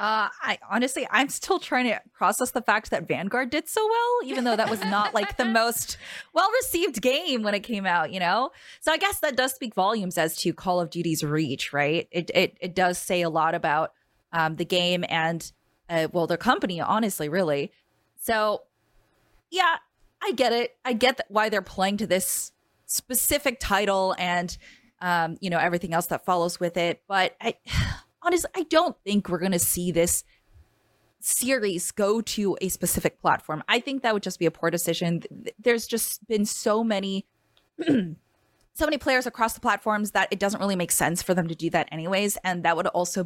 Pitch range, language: 175-240 Hz, English